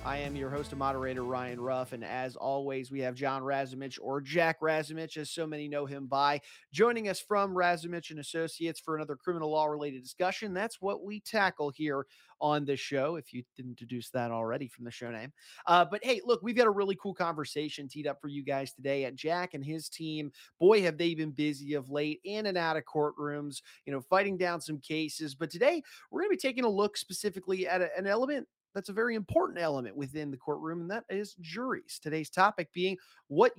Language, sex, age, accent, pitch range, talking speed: English, male, 30-49, American, 140-195 Hz, 220 wpm